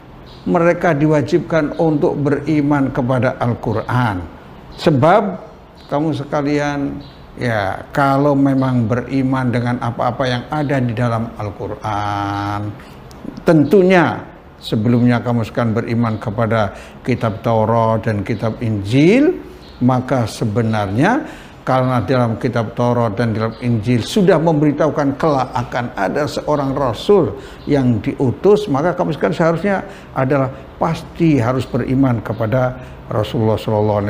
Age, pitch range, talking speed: 60-79, 110-145 Hz, 100 wpm